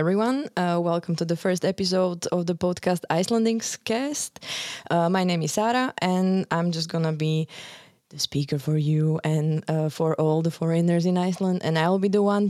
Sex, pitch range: female, 155-180 Hz